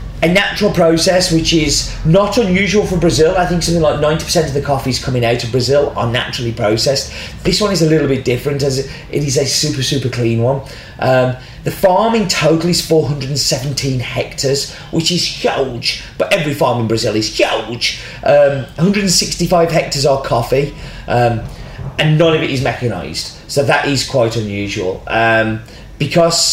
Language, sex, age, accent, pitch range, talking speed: English, male, 30-49, British, 125-160 Hz, 170 wpm